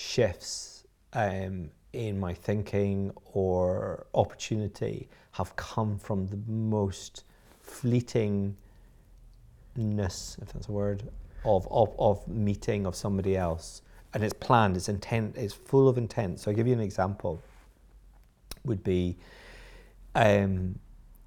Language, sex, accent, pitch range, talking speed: English, male, British, 95-110 Hz, 120 wpm